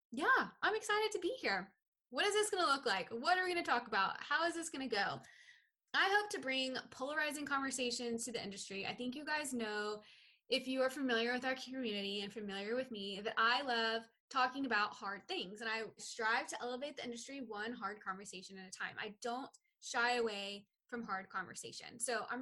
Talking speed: 215 wpm